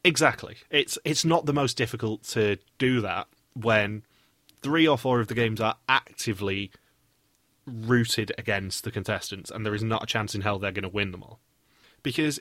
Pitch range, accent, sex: 105-140 Hz, British, male